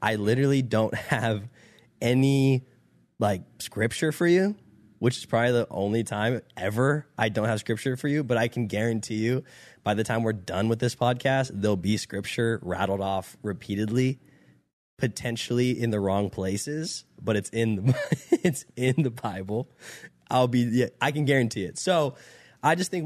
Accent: American